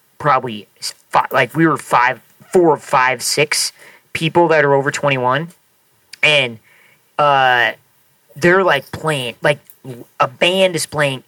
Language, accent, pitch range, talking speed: English, American, 145-185 Hz, 130 wpm